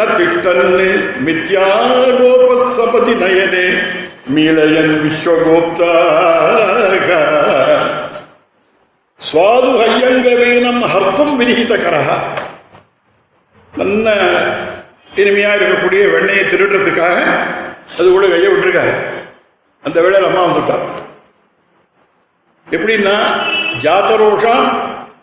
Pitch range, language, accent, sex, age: 190-235 Hz, Tamil, native, male, 60-79